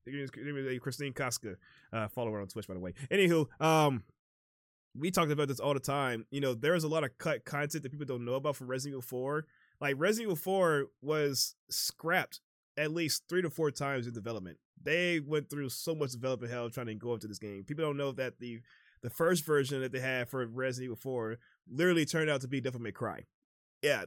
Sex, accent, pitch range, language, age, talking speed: male, American, 130-180 Hz, English, 20-39, 215 wpm